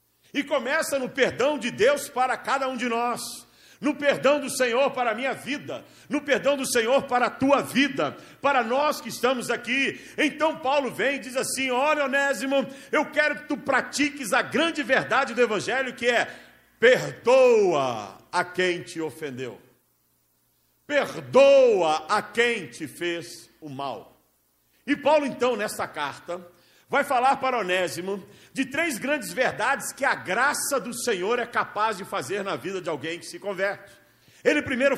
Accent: Brazilian